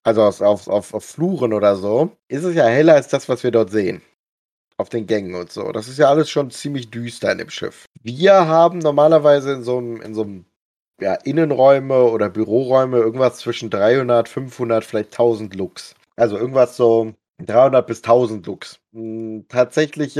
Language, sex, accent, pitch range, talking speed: German, male, German, 110-140 Hz, 180 wpm